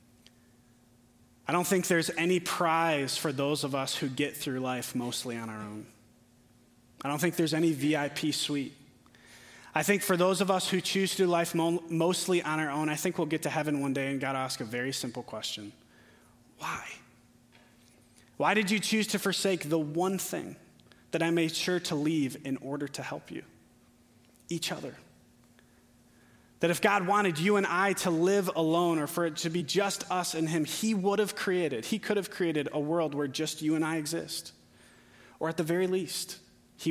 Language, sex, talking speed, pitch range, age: English, male, 195 wpm, 120-170 Hz, 30-49